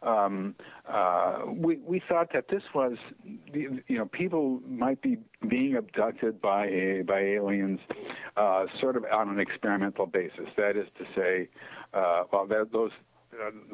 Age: 60-79